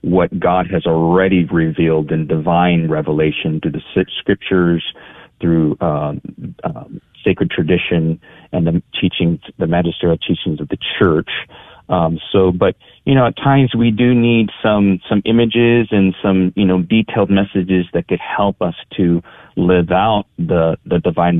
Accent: American